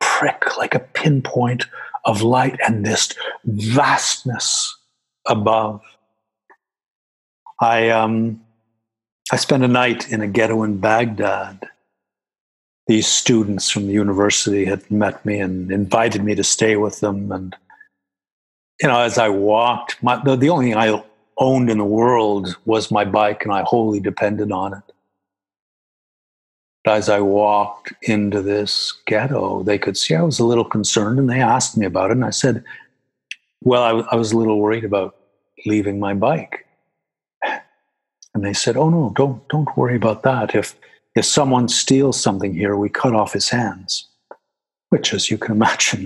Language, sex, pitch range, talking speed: English, male, 105-120 Hz, 150 wpm